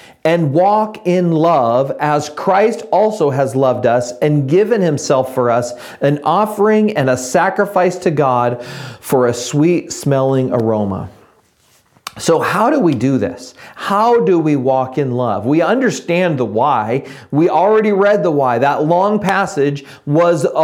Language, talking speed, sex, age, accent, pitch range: English, 150 wpm, male, 40-59, American, 140-195 Hz